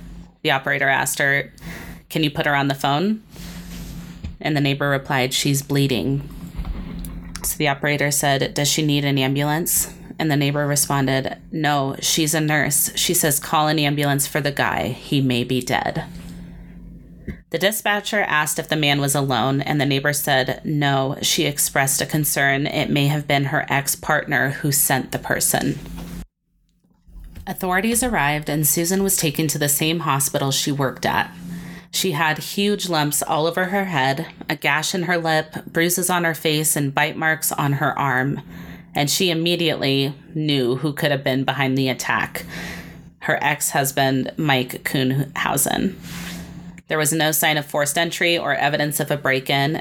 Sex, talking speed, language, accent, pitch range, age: female, 165 wpm, English, American, 140-165 Hz, 20-39